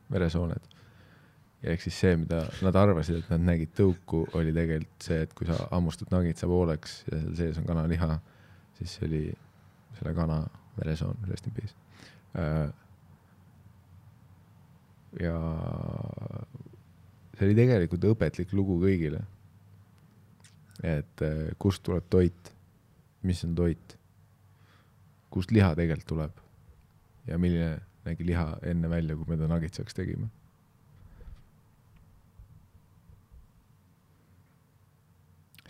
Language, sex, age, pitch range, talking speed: English, male, 20-39, 80-100 Hz, 105 wpm